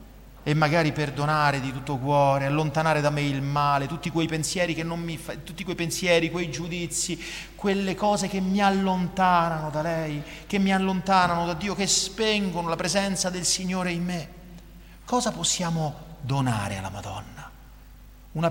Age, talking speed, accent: 30-49, 160 wpm, native